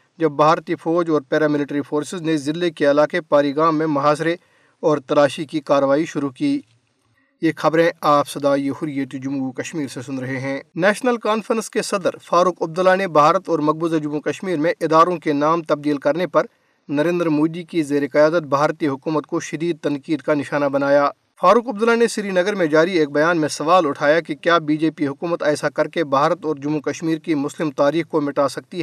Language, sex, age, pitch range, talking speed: Urdu, male, 50-69, 145-175 Hz, 195 wpm